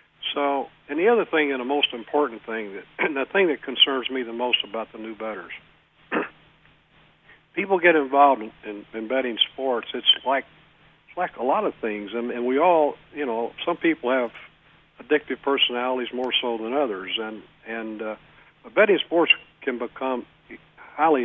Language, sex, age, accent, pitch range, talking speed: English, male, 50-69, American, 115-135 Hz, 180 wpm